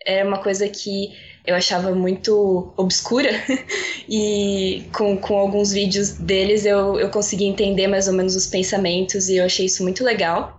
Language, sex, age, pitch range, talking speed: Portuguese, female, 10-29, 185-215 Hz, 170 wpm